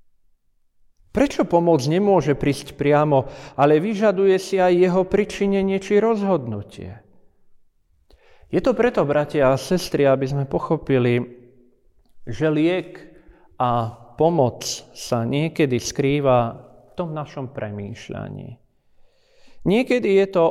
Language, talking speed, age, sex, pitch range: Slovak, 105 wpm, 40-59, male, 120-185 Hz